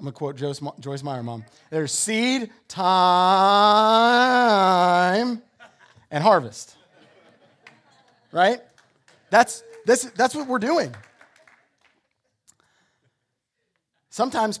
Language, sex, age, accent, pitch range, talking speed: English, male, 30-49, American, 130-185 Hz, 80 wpm